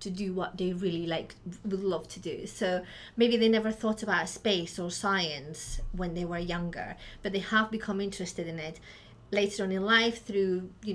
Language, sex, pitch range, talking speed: English, female, 195-230 Hz, 205 wpm